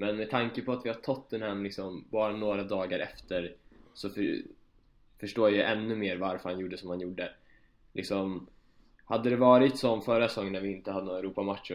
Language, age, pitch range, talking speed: Swedish, 20-39, 90-115 Hz, 205 wpm